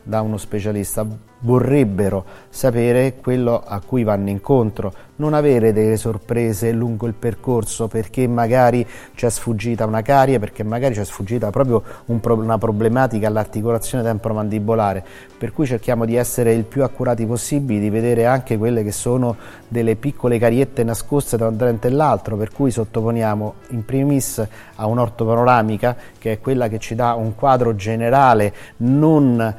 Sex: male